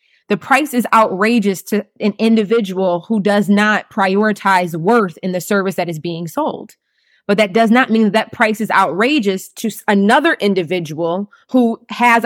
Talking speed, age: 165 wpm, 20-39